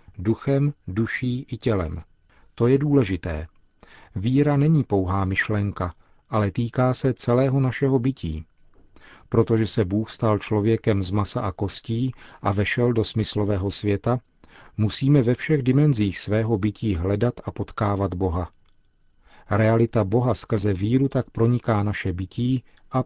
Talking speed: 130 wpm